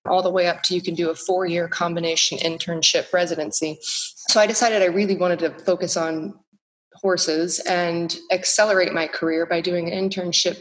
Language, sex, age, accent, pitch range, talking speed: English, female, 30-49, American, 170-190 Hz, 175 wpm